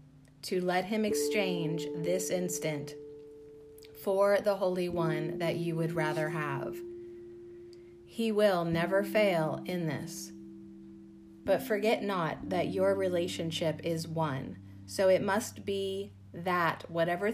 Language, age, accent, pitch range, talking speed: English, 30-49, American, 145-190 Hz, 120 wpm